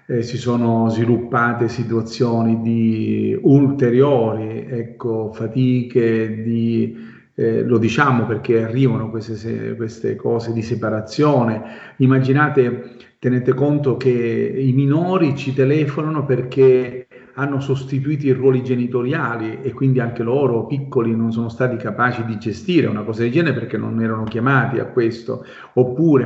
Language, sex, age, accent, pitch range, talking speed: Italian, male, 40-59, native, 115-130 Hz, 125 wpm